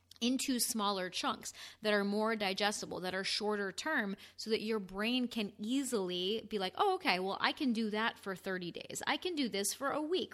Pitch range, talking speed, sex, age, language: 205-245 Hz, 210 wpm, female, 30-49, English